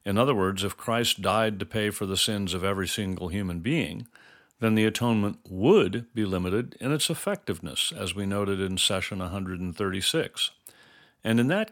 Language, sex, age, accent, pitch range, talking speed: English, male, 50-69, American, 95-125 Hz, 175 wpm